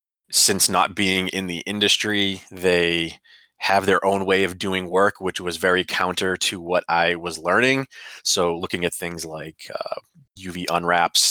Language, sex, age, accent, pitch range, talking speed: English, male, 30-49, American, 85-100 Hz, 165 wpm